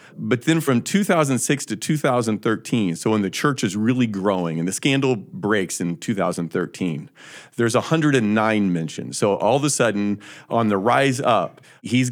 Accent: American